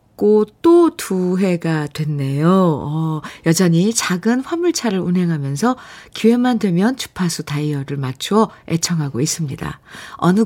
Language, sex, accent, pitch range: Korean, female, native, 150-210 Hz